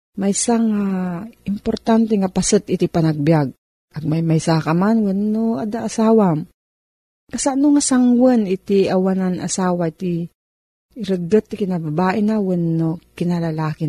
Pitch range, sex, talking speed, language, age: 165-220 Hz, female, 120 wpm, Filipino, 40-59